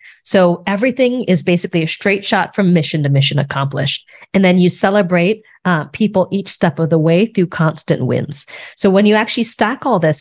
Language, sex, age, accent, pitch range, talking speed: English, female, 30-49, American, 165-210 Hz, 195 wpm